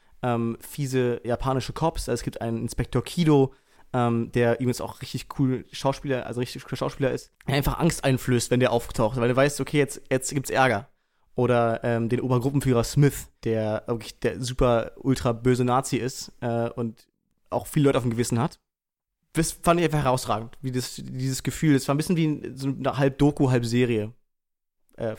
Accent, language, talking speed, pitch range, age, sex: German, German, 190 wpm, 125-145 Hz, 30-49, male